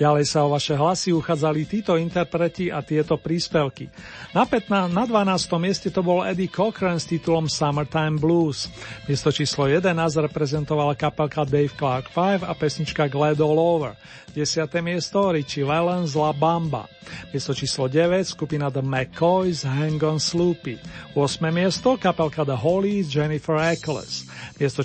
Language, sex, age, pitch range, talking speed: Slovak, male, 40-59, 145-175 Hz, 145 wpm